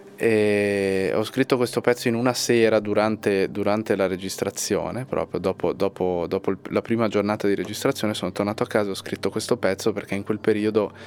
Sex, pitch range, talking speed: male, 100-120 Hz, 190 wpm